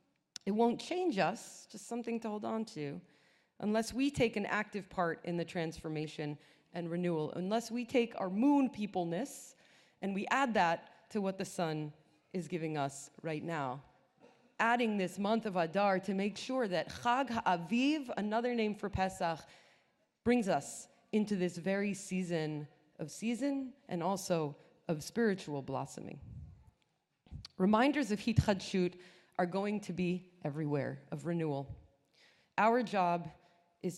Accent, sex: American, female